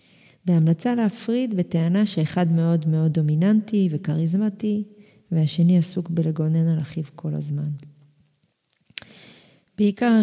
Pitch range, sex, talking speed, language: 155-190 Hz, female, 95 wpm, Hebrew